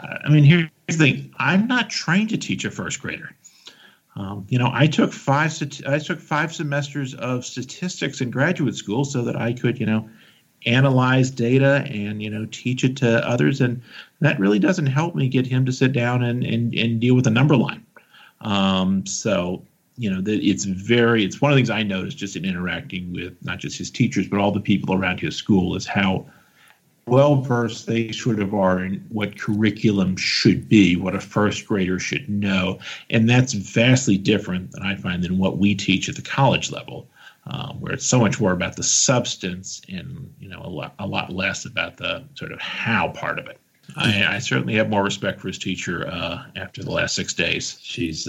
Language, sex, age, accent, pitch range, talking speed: English, male, 50-69, American, 100-135 Hz, 205 wpm